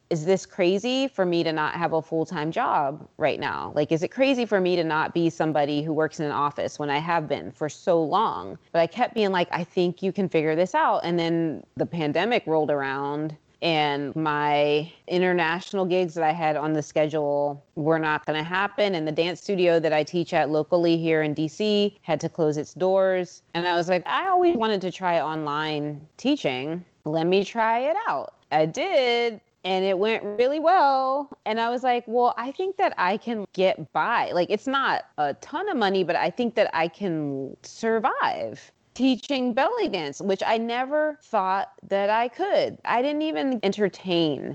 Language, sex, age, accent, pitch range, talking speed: English, female, 20-39, American, 160-220 Hz, 200 wpm